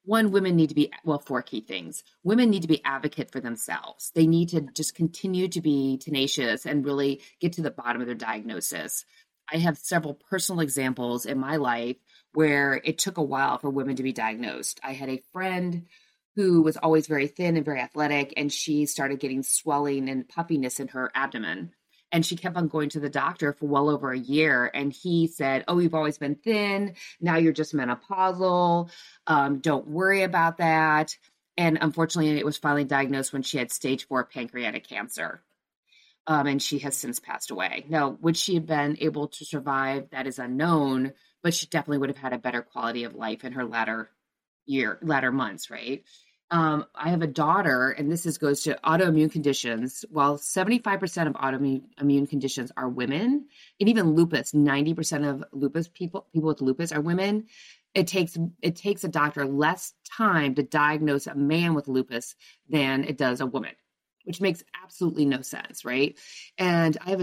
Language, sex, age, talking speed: English, female, 30-49, 190 wpm